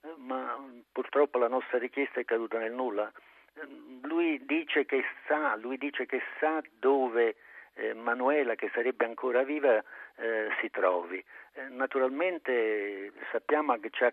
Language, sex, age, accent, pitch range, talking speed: Italian, male, 50-69, native, 120-185 Hz, 130 wpm